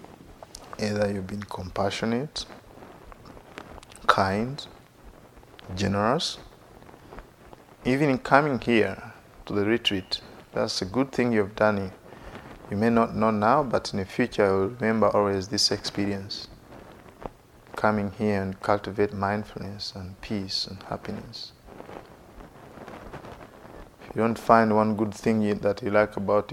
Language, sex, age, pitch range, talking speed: English, male, 50-69, 100-110 Hz, 120 wpm